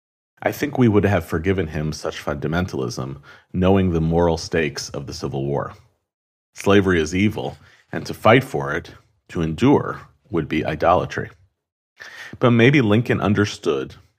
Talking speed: 145 wpm